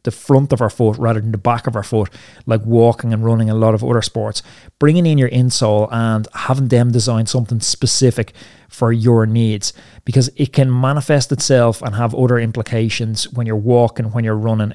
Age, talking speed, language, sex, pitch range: 30-49, 200 wpm, English, male, 110-130 Hz